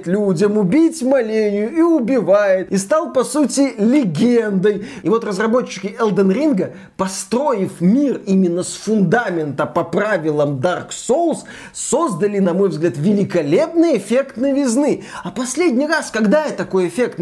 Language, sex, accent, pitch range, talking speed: Russian, male, native, 200-280 Hz, 130 wpm